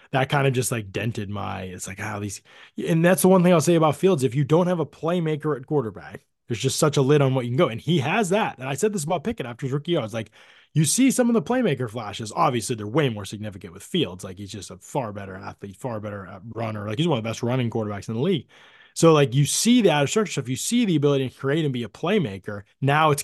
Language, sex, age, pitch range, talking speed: English, male, 20-39, 110-145 Hz, 280 wpm